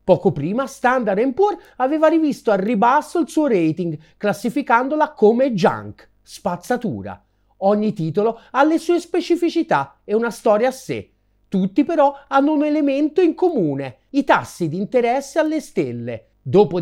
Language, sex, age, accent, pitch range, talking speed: Italian, male, 40-59, native, 170-280 Hz, 145 wpm